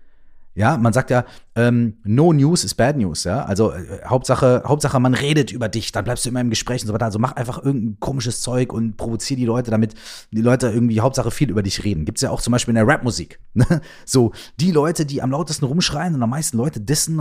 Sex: male